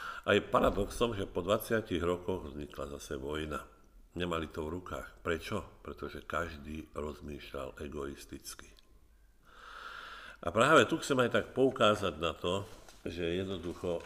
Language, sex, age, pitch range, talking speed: Slovak, male, 50-69, 85-105 Hz, 130 wpm